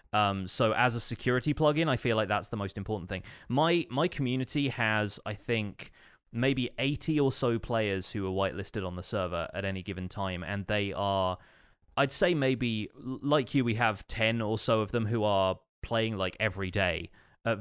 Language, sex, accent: English, male, British